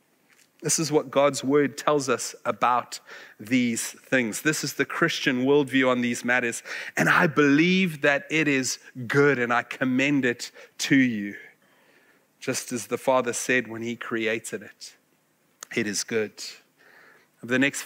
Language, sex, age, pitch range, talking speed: English, male, 30-49, 120-155 Hz, 155 wpm